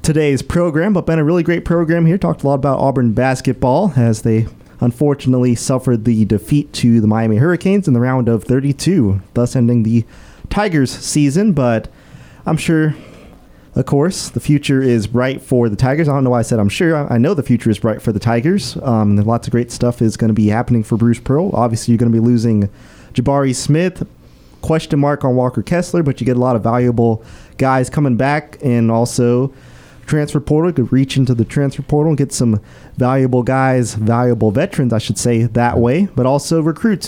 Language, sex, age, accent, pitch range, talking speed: English, male, 30-49, American, 120-145 Hz, 200 wpm